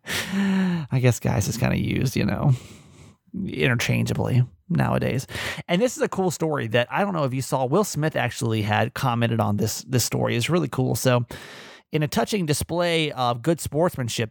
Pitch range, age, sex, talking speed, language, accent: 130-180 Hz, 30-49, male, 185 wpm, English, American